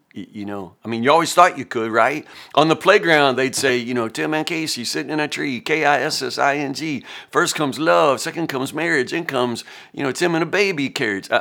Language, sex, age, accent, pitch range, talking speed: English, male, 50-69, American, 125-160 Hz, 210 wpm